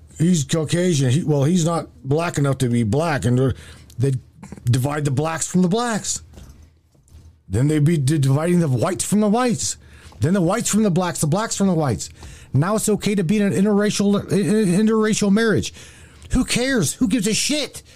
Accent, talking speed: American, 180 wpm